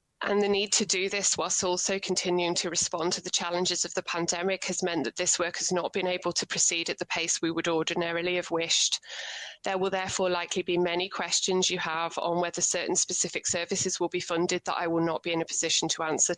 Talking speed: 230 wpm